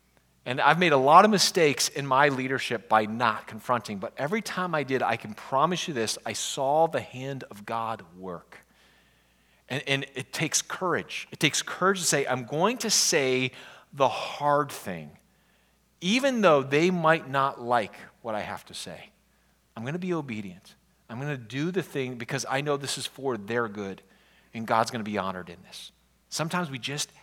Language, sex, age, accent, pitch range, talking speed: English, male, 40-59, American, 135-205 Hz, 195 wpm